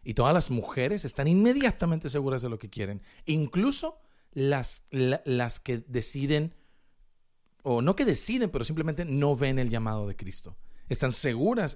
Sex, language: male, Spanish